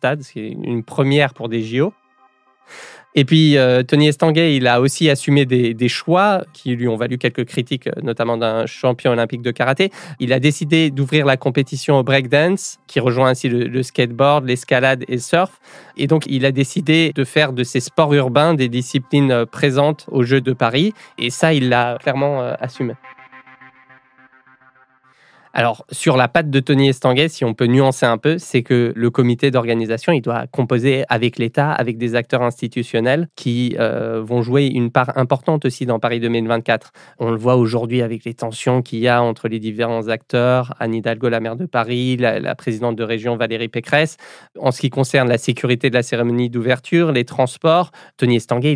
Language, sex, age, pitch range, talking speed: French, male, 20-39, 120-140 Hz, 190 wpm